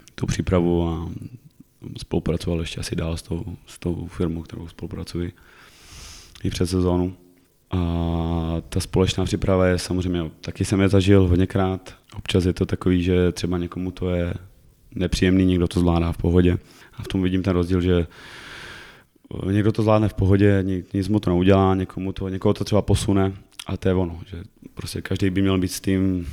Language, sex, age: Czech, male, 20-39